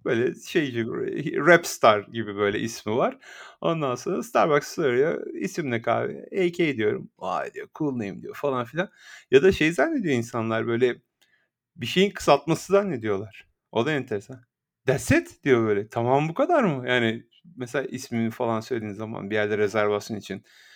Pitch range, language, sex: 115-175 Hz, Turkish, male